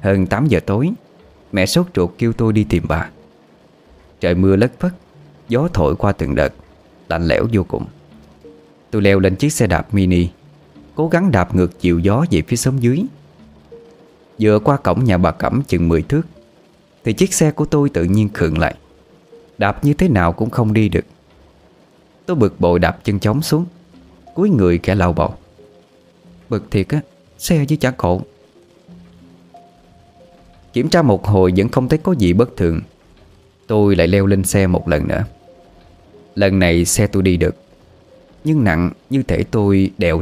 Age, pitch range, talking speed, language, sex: 20-39, 85-120 Hz, 175 wpm, Vietnamese, male